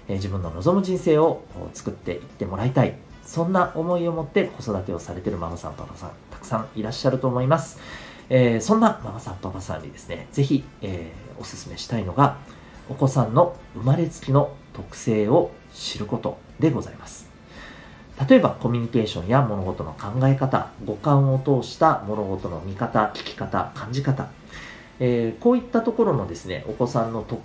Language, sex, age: Japanese, male, 40-59